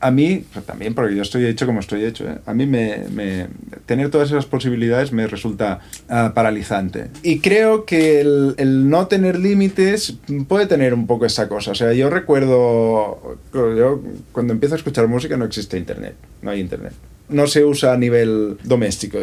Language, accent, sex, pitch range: Spanish, Spanish, male, 110-135 Hz